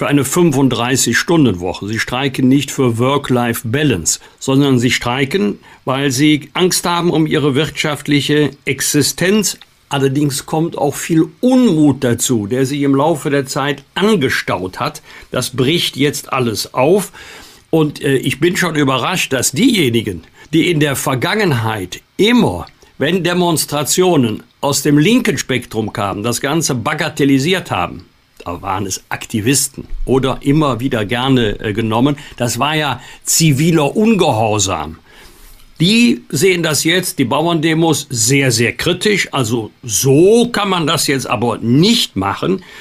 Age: 50-69